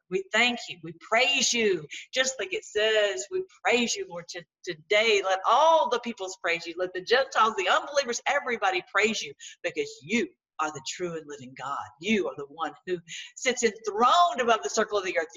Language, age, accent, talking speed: English, 50-69, American, 195 wpm